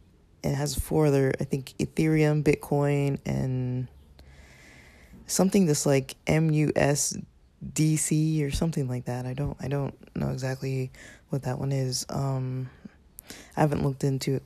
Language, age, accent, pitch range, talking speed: English, 20-39, American, 130-145 Hz, 155 wpm